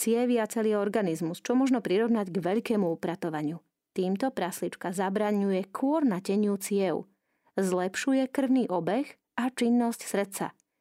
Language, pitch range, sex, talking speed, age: Slovak, 185-235 Hz, female, 120 wpm, 30-49